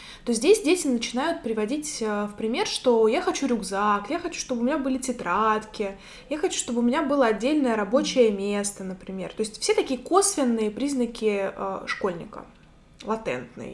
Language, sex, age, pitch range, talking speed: Russian, female, 20-39, 220-300 Hz, 155 wpm